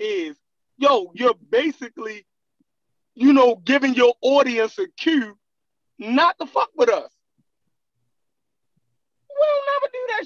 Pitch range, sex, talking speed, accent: 210-300 Hz, male, 115 wpm, American